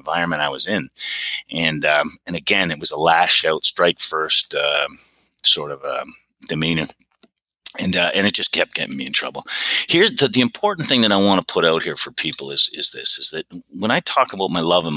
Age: 30-49